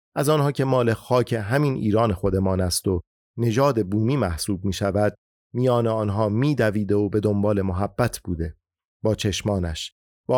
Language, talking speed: Persian, 150 wpm